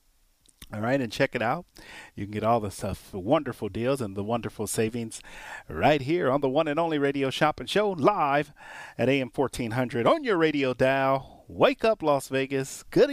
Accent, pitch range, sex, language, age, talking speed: American, 115-160 Hz, male, English, 40-59, 190 wpm